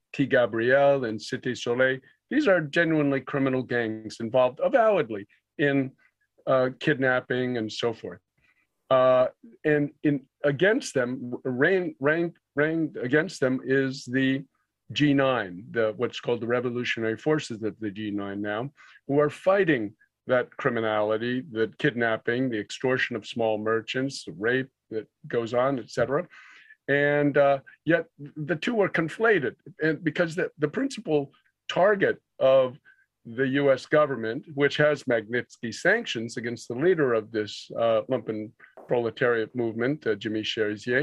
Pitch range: 115-150 Hz